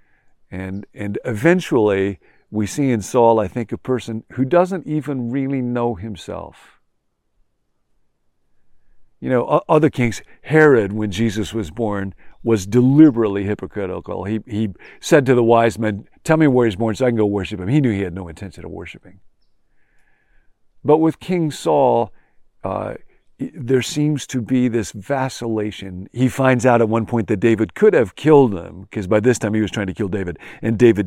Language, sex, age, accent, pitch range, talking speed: English, male, 50-69, American, 100-125 Hz, 175 wpm